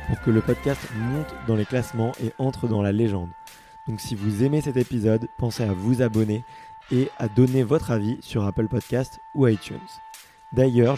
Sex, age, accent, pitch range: male, 20-39, French, 110-130 Hz